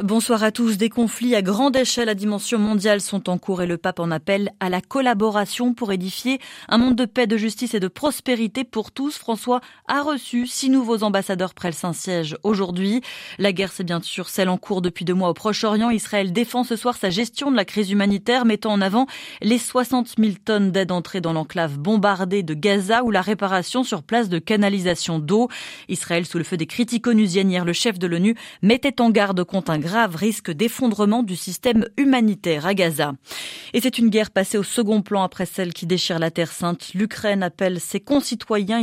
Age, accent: 20-39, French